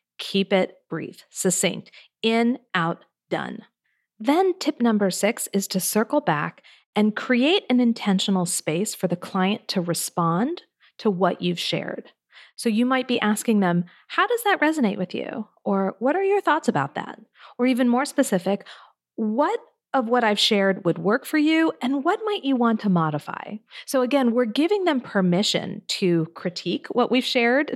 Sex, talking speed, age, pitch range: female, 170 wpm, 40-59, 185-255 Hz